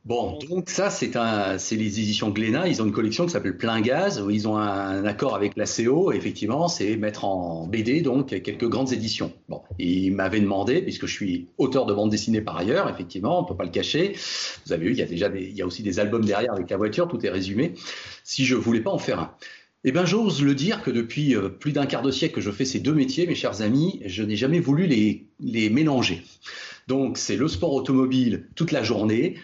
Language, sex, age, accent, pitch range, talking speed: French, male, 40-59, French, 105-140 Hz, 225 wpm